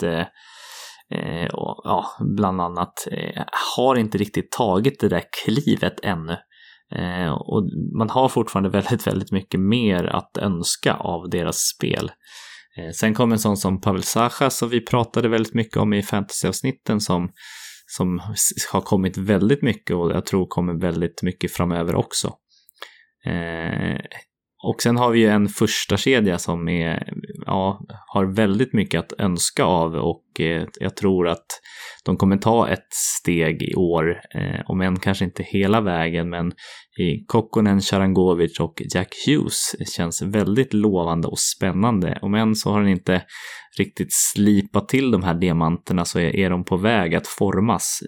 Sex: male